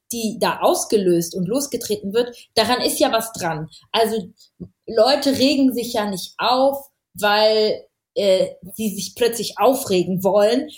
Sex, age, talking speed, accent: female, 20-39, 140 wpm, German